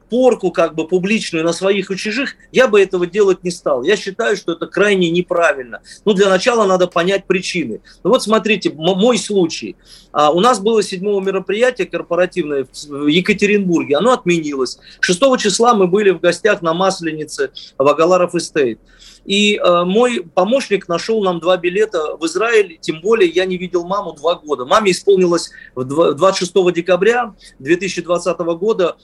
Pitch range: 170-205 Hz